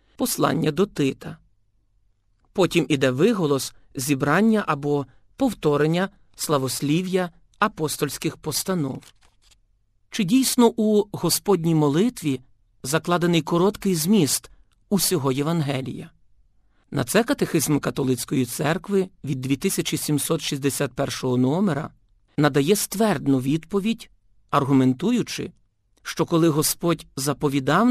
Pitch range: 130-175 Hz